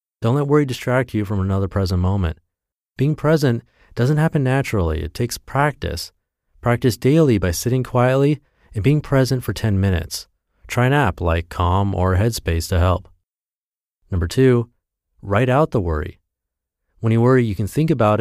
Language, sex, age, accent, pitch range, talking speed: English, male, 30-49, American, 90-125 Hz, 165 wpm